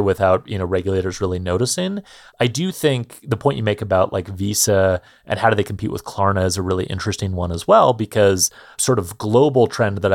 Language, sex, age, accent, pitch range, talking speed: English, male, 30-49, American, 95-125 Hz, 200 wpm